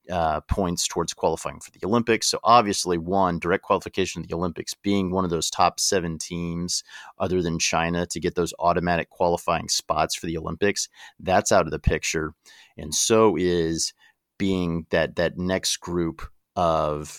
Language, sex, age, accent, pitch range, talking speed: English, male, 40-59, American, 85-105 Hz, 170 wpm